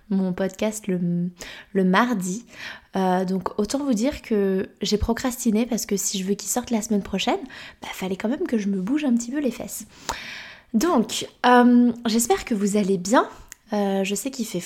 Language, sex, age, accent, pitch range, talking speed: French, female, 20-39, French, 195-230 Hz, 195 wpm